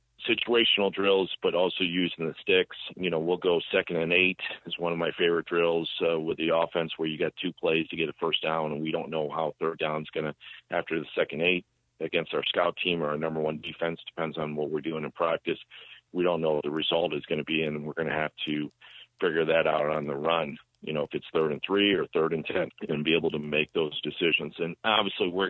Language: English